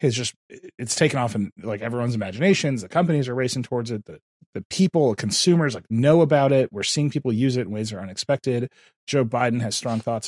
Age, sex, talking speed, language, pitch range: 30-49, male, 220 wpm, English, 110-150 Hz